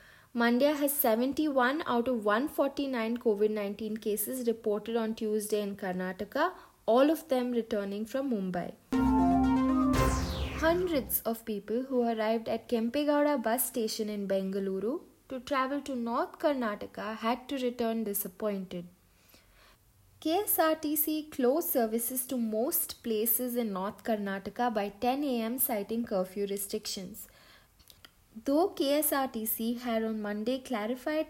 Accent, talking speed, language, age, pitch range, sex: Indian, 115 wpm, English, 20-39, 210-265 Hz, female